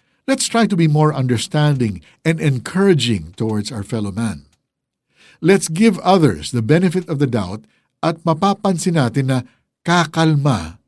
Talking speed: 140 wpm